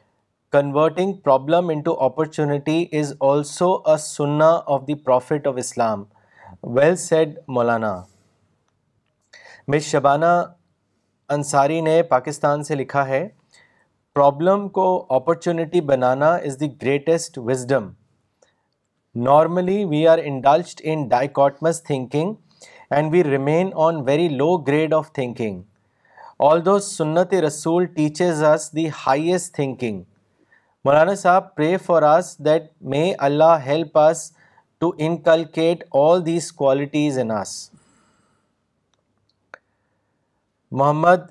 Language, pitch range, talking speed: Urdu, 135-165 Hz, 105 wpm